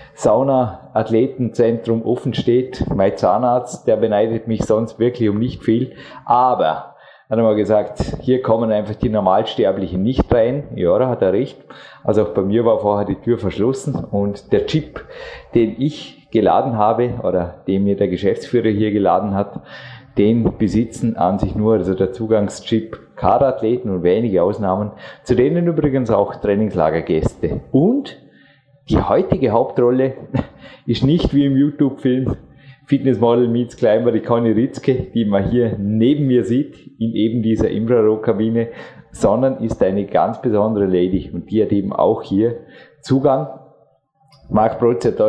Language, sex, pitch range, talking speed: German, male, 105-130 Hz, 150 wpm